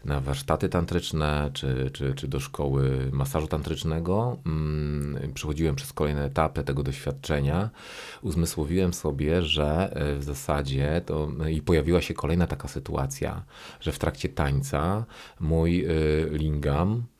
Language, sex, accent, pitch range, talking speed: Polish, male, native, 75-90 Hz, 120 wpm